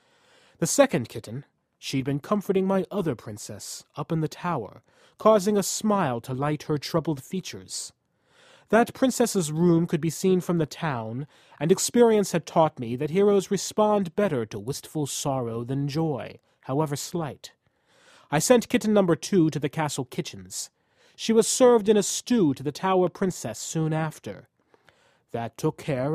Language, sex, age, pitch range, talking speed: English, male, 30-49, 135-185 Hz, 160 wpm